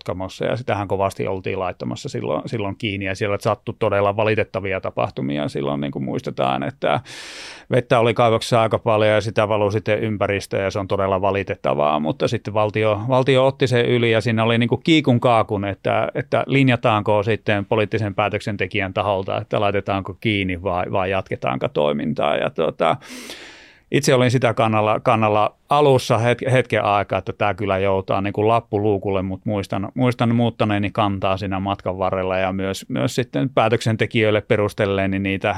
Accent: native